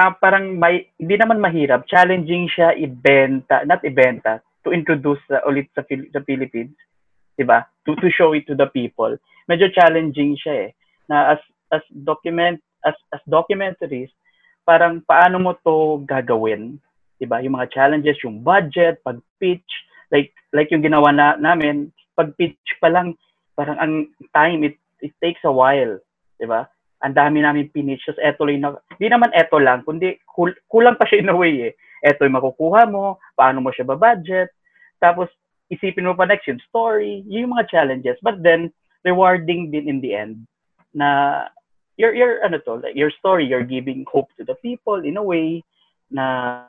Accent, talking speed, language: Filipino, 170 wpm, English